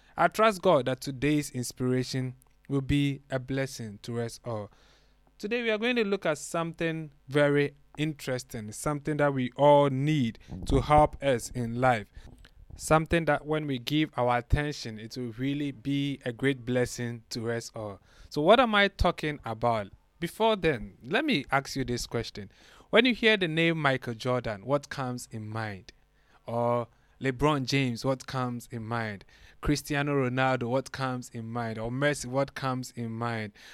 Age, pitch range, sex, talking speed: 20-39, 120-145 Hz, male, 165 wpm